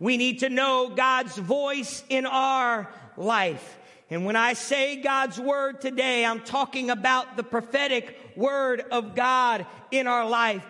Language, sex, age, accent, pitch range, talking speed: English, male, 50-69, American, 250-295 Hz, 150 wpm